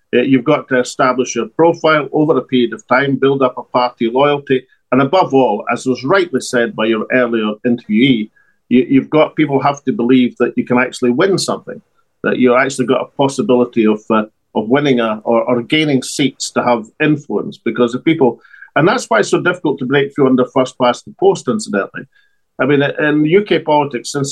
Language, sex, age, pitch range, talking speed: English, male, 50-69, 120-145 Hz, 195 wpm